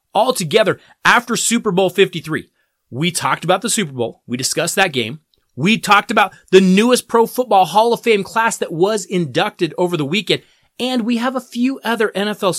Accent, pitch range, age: American, 175-245 Hz, 30-49